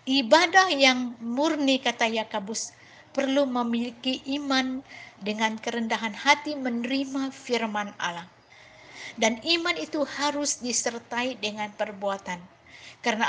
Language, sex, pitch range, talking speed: Malay, female, 225-280 Hz, 100 wpm